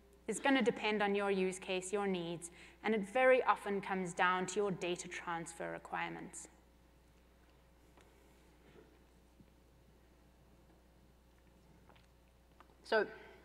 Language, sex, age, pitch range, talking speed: English, female, 30-49, 175-210 Hz, 95 wpm